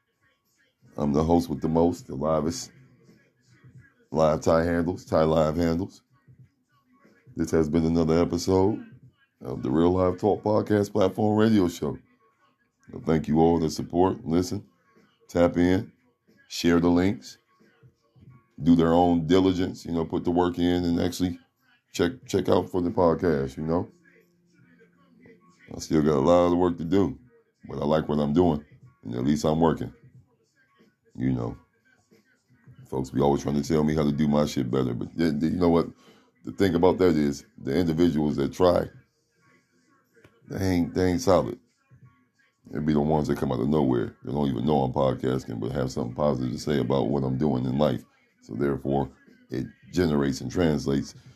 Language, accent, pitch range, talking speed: English, American, 75-90 Hz, 175 wpm